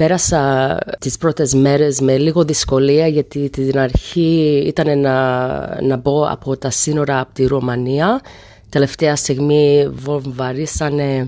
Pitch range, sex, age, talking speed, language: 135-175 Hz, female, 30-49, 120 wpm, Greek